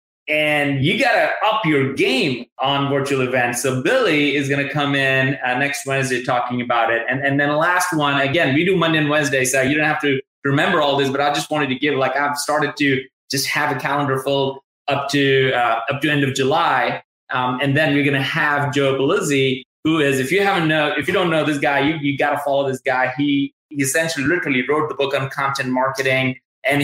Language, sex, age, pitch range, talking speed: English, male, 20-39, 130-150 Hz, 235 wpm